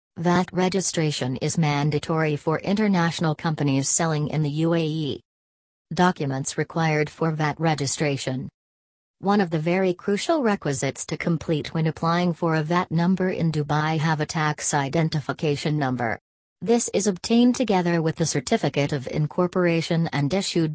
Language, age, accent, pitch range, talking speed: English, 40-59, American, 140-170 Hz, 140 wpm